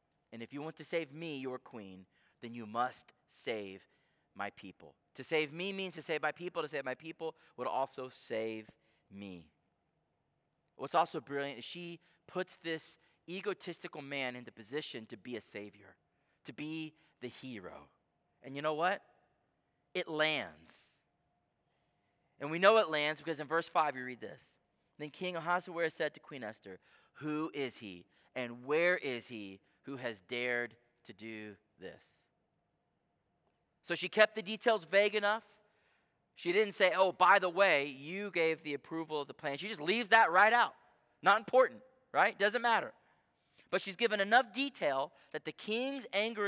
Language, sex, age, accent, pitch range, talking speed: English, male, 30-49, American, 130-190 Hz, 165 wpm